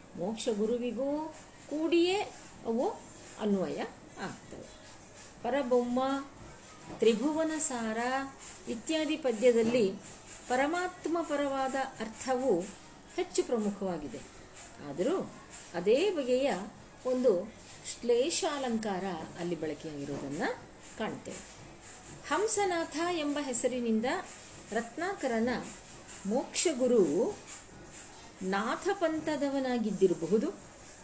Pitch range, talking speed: 220-295 Hz, 60 wpm